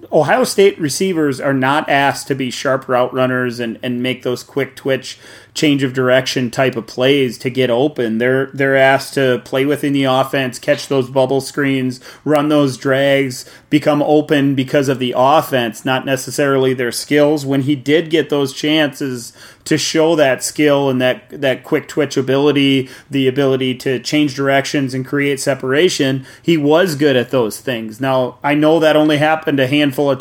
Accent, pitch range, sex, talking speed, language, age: American, 130-145 Hz, male, 180 wpm, English, 30-49